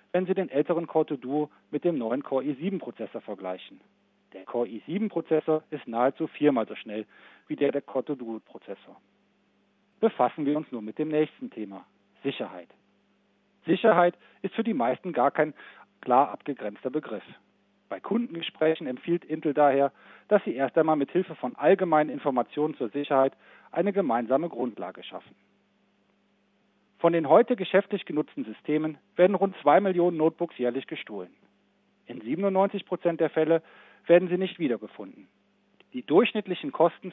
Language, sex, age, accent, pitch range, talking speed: German, male, 40-59, German, 135-180 Hz, 140 wpm